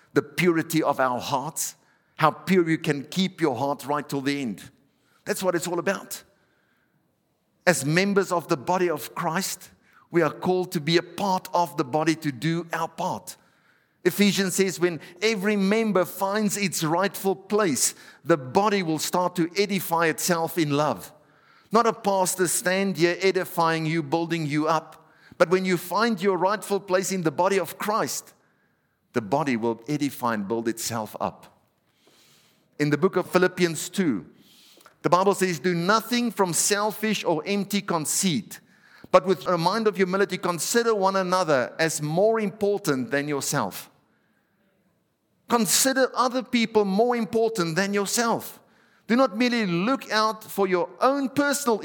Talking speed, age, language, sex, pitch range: 155 wpm, 50-69, English, male, 160-205 Hz